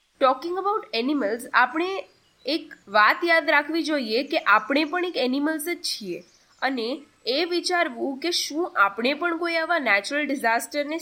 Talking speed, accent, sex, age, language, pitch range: 145 wpm, native, female, 20-39, Gujarati, 250-325 Hz